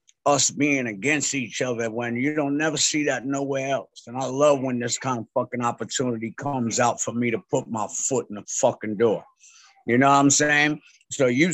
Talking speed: 215 wpm